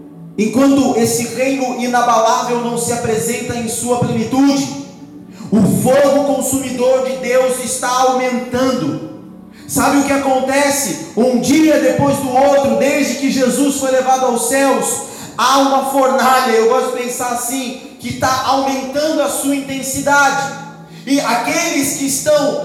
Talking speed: 135 wpm